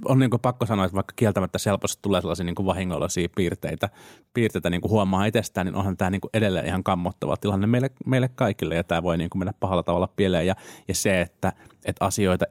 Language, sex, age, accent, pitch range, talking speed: Finnish, male, 30-49, native, 90-110 Hz, 195 wpm